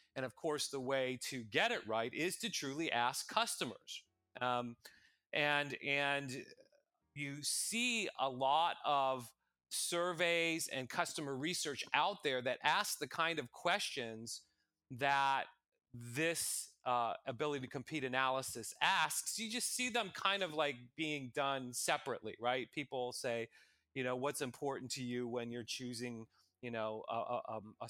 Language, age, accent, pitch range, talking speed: English, 30-49, American, 120-145 Hz, 150 wpm